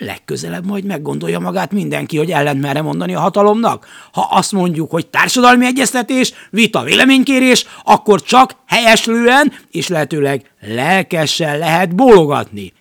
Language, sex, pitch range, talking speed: Hungarian, male, 140-200 Hz, 120 wpm